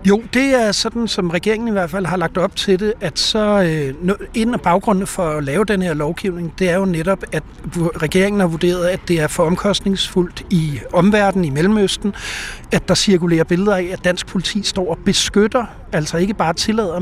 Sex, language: male, Danish